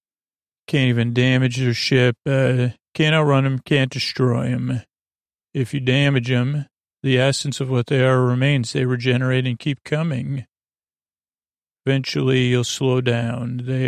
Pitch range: 125-140 Hz